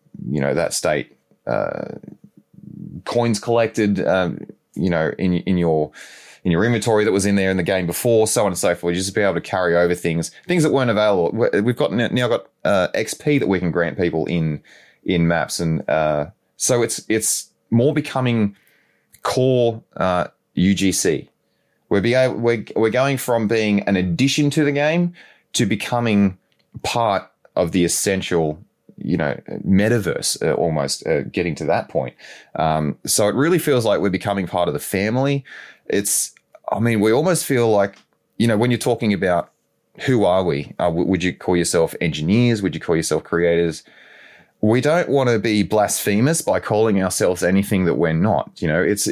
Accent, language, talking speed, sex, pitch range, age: Australian, English, 185 wpm, male, 90-120 Hz, 30-49